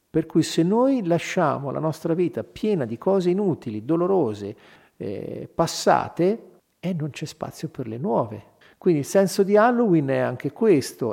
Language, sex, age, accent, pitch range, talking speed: Italian, male, 50-69, native, 135-180 Hz, 160 wpm